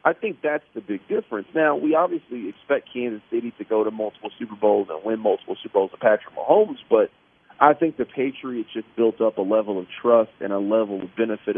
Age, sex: 40-59, male